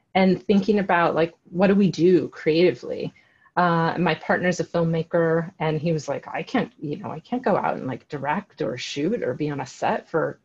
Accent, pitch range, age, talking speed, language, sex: American, 160-205 Hz, 30-49, 210 wpm, English, female